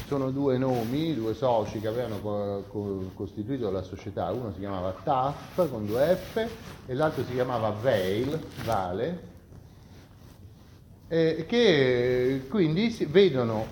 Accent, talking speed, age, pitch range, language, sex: native, 120 wpm, 30-49, 105-165 Hz, Italian, male